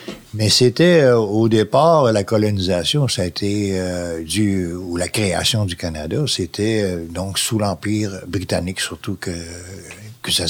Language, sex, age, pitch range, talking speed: French, male, 60-79, 90-110 Hz, 145 wpm